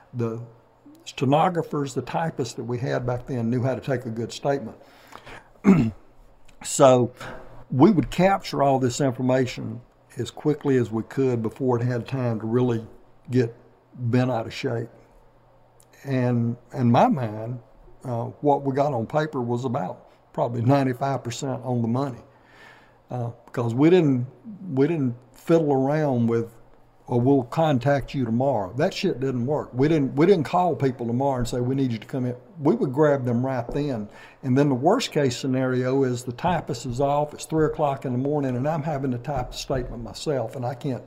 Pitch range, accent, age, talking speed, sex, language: 120-140 Hz, American, 60-79, 180 wpm, male, English